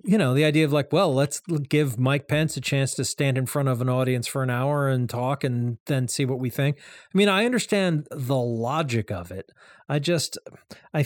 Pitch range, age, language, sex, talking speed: 130-155 Hz, 40-59, English, male, 230 wpm